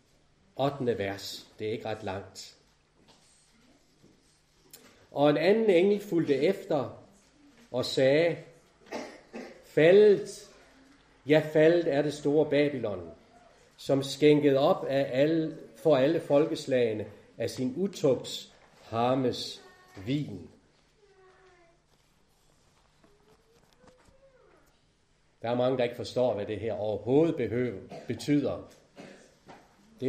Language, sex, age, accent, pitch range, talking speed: Danish, male, 40-59, native, 140-200 Hz, 95 wpm